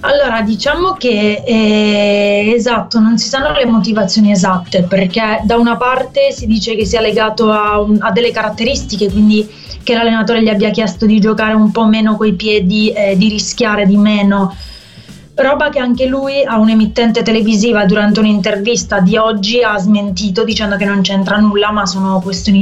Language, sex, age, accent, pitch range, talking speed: Italian, female, 20-39, native, 195-225 Hz, 170 wpm